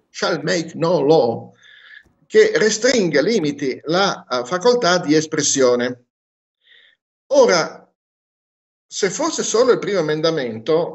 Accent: native